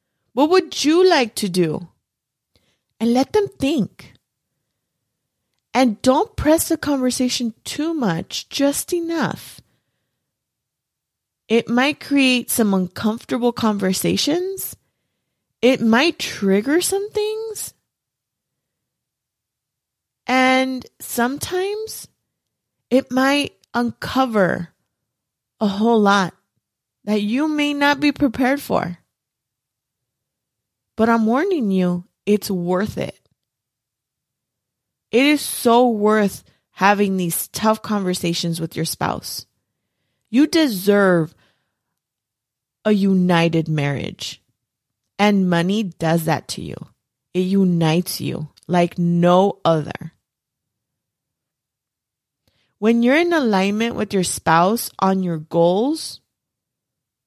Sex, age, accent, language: female, 30-49, American, English